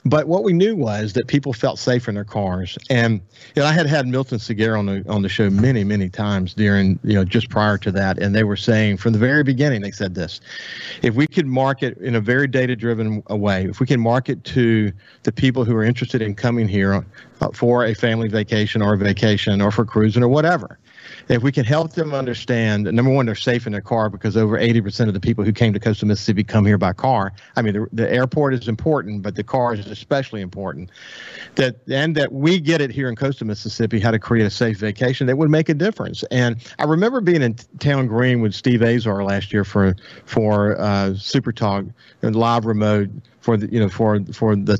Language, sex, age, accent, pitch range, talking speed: English, male, 50-69, American, 105-130 Hz, 230 wpm